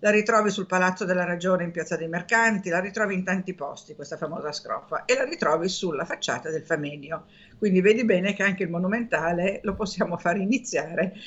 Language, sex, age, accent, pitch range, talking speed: Italian, female, 50-69, native, 175-210 Hz, 190 wpm